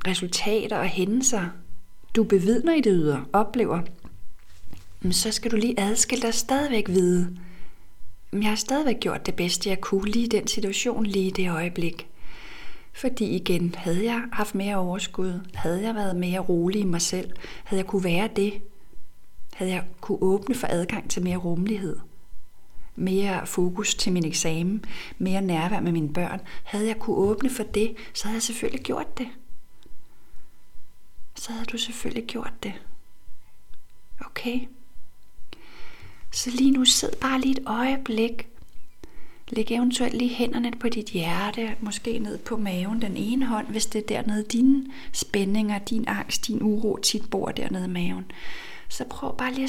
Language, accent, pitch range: Danish, native, 185-230 Hz